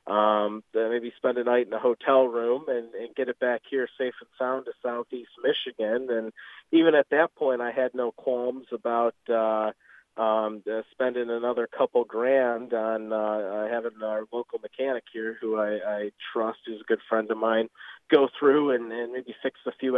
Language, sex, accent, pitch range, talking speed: English, male, American, 110-125 Hz, 190 wpm